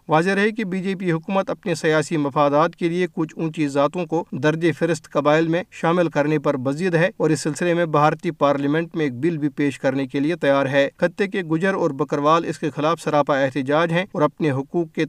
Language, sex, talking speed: Urdu, male, 225 wpm